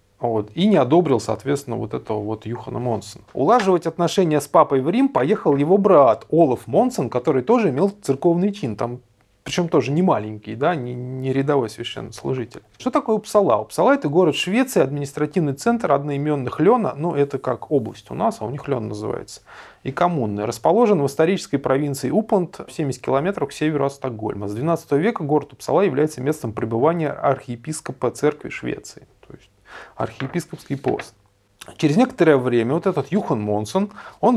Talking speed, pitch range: 165 wpm, 120-175 Hz